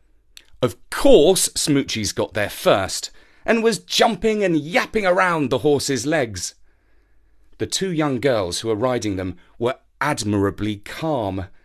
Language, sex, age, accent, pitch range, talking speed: English, male, 40-59, British, 100-165 Hz, 135 wpm